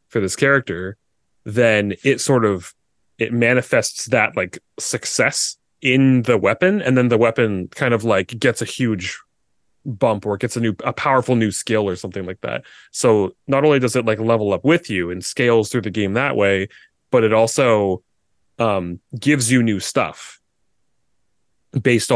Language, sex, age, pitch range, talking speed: English, male, 20-39, 100-125 Hz, 175 wpm